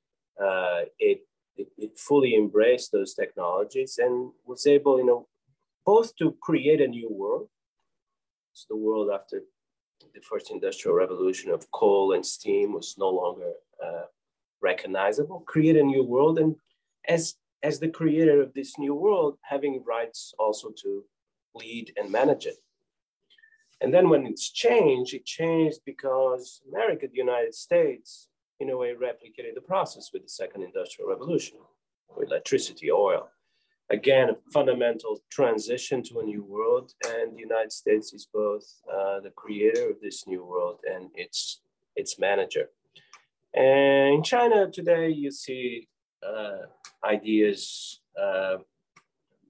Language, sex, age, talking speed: English, male, 30-49, 140 wpm